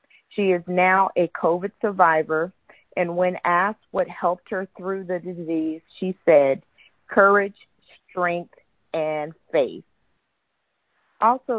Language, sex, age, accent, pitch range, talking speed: English, female, 40-59, American, 160-190 Hz, 115 wpm